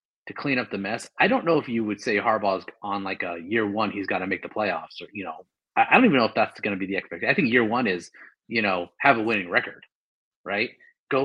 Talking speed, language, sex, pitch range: 270 wpm, English, male, 105-135 Hz